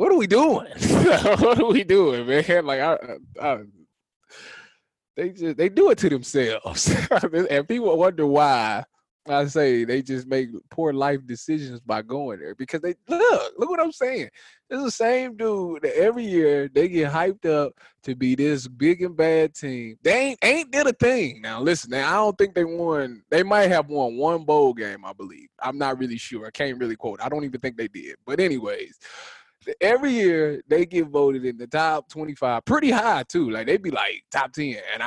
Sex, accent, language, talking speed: male, American, English, 195 wpm